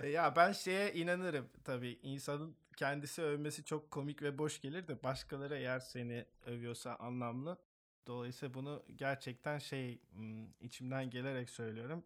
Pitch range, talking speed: 135-155 Hz, 130 wpm